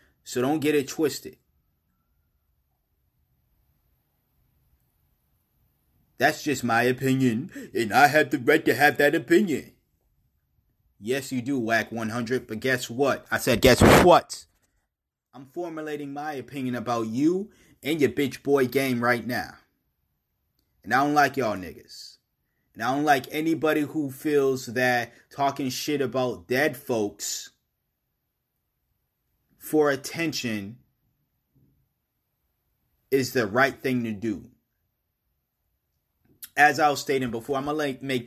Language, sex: English, male